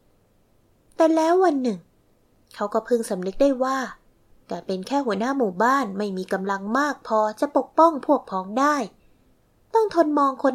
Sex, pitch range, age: female, 195-275 Hz, 20-39